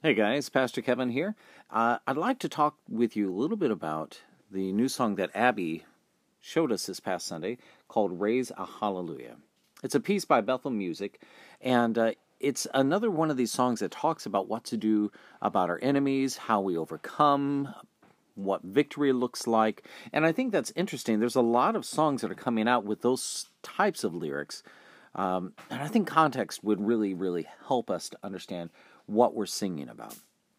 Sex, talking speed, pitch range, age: male, 185 wpm, 100-135 Hz, 40-59